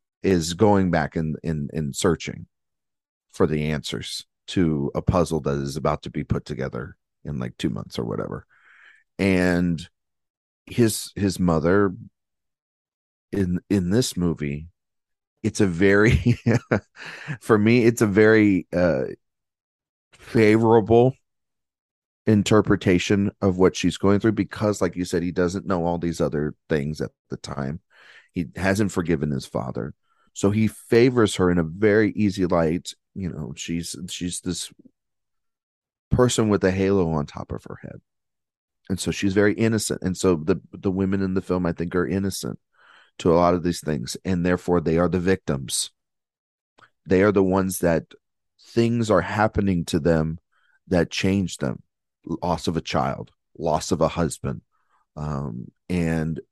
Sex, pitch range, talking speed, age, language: male, 85-100 Hz, 150 wpm, 40-59, English